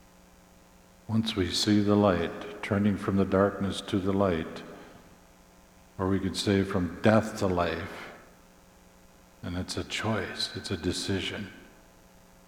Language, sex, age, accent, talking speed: English, male, 50-69, American, 130 wpm